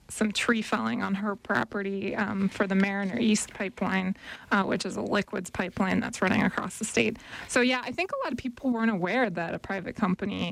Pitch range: 195-225 Hz